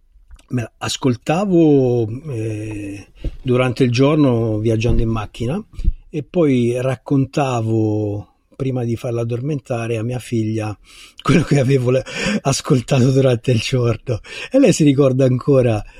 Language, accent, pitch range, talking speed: Italian, native, 115-140 Hz, 115 wpm